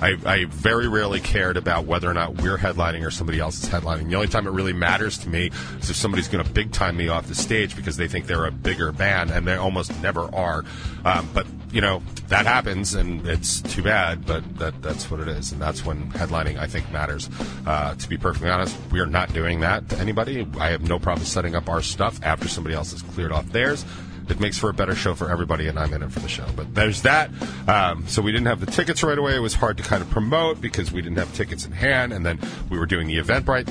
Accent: American